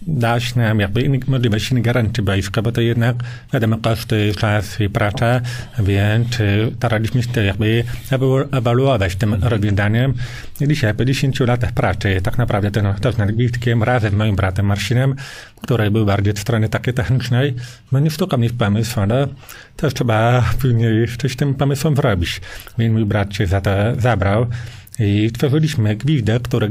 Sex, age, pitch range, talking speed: male, 40-59, 110-125 Hz, 165 wpm